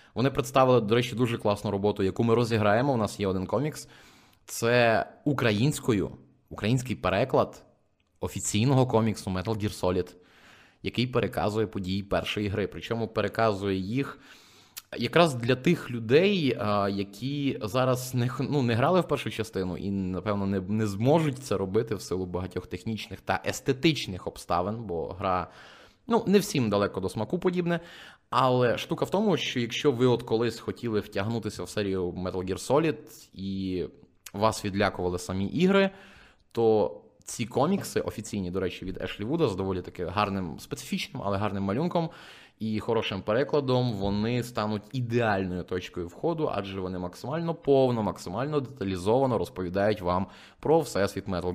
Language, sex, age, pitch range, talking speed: Ukrainian, male, 20-39, 95-130 Hz, 145 wpm